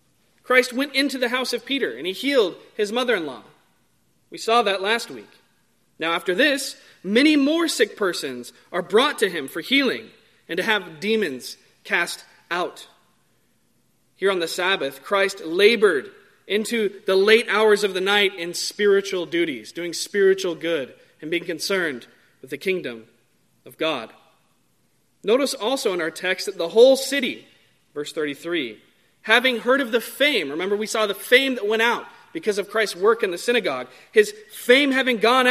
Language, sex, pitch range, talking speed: English, male, 180-255 Hz, 165 wpm